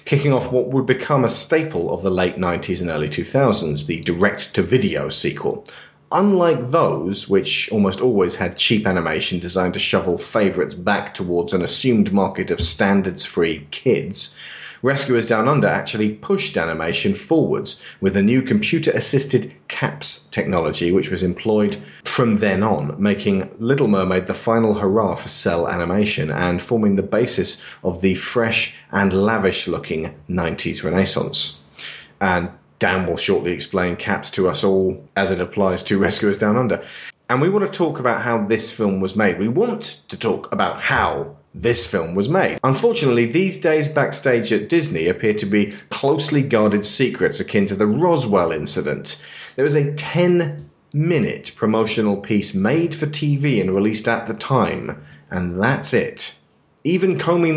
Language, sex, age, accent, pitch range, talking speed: English, male, 40-59, British, 95-145 Hz, 155 wpm